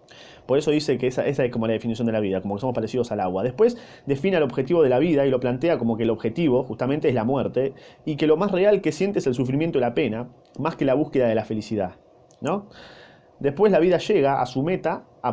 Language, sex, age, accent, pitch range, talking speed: Spanish, male, 20-39, Argentinian, 115-155 Hz, 255 wpm